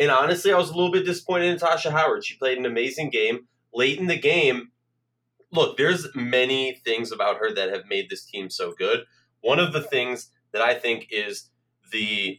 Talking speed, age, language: 205 wpm, 20-39, English